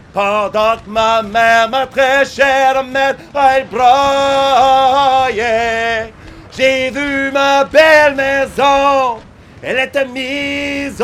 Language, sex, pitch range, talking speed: English, male, 210-265 Hz, 100 wpm